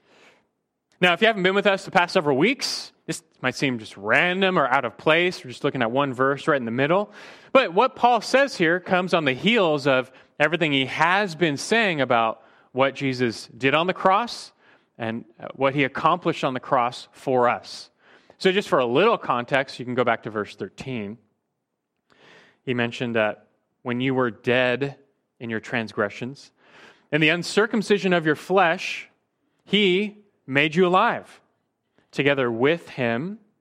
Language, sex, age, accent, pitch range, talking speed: English, male, 30-49, American, 125-180 Hz, 175 wpm